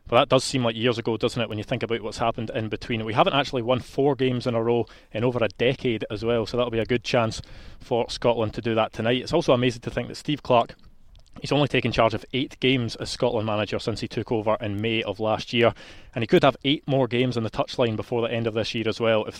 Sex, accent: male, British